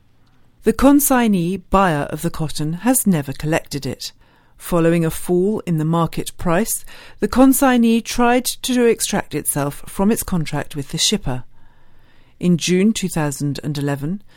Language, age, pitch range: English, 40-59, 150-215 Hz